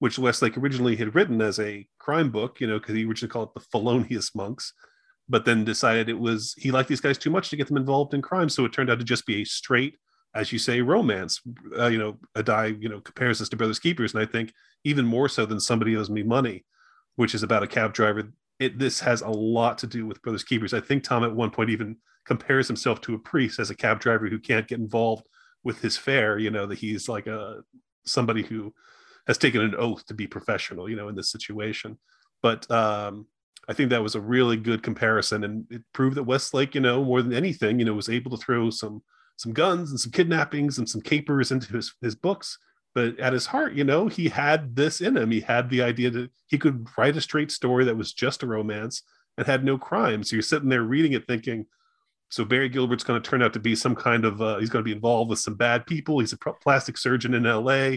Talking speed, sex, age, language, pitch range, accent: 245 wpm, male, 30-49, English, 110-130 Hz, American